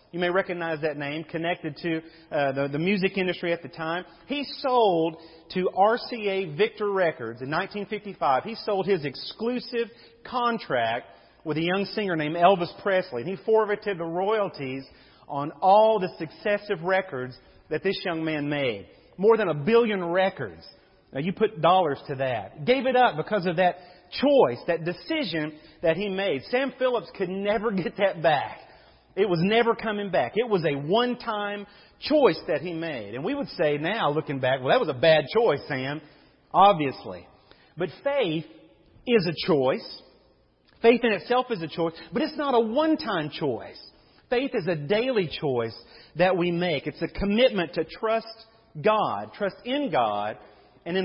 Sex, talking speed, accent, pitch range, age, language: male, 170 wpm, American, 155-220 Hz, 40-59, English